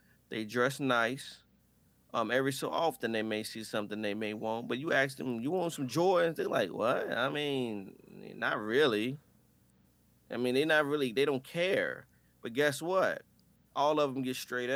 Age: 30-49